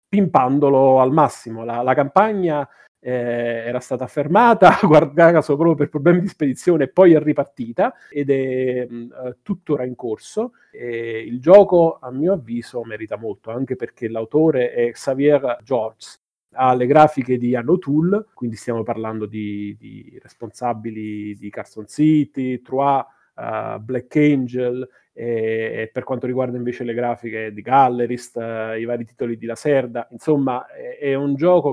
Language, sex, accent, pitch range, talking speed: Italian, male, native, 120-150 Hz, 145 wpm